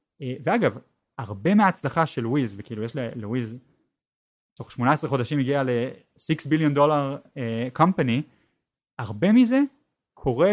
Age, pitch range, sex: 20-39, 125-170 Hz, male